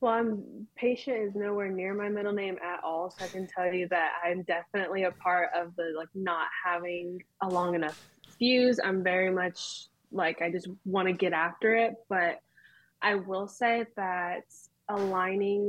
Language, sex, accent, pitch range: English, female, American, 185-210 Hz